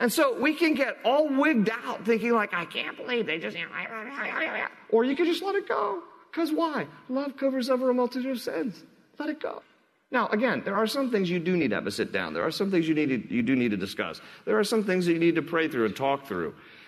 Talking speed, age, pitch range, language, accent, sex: 250 wpm, 40-59, 110-180 Hz, English, American, male